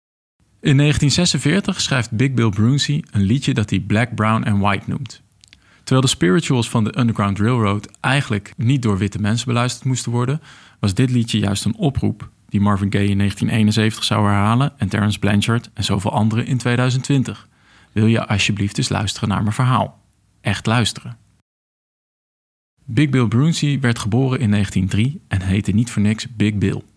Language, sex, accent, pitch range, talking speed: Dutch, male, Dutch, 105-130 Hz, 165 wpm